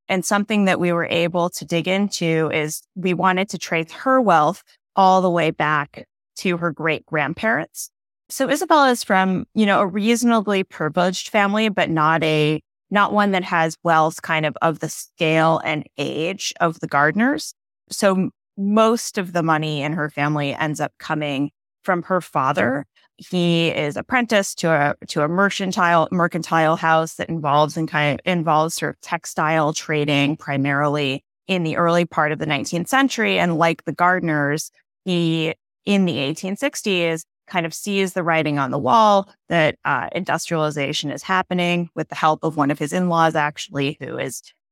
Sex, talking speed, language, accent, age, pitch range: female, 170 wpm, English, American, 20-39, 155-190 Hz